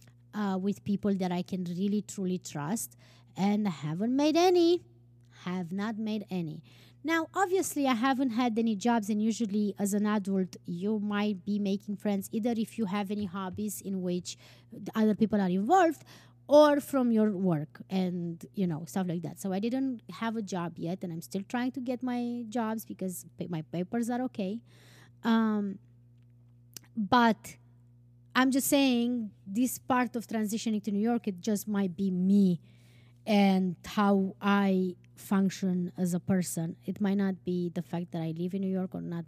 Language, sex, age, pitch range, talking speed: English, female, 20-39, 180-230 Hz, 175 wpm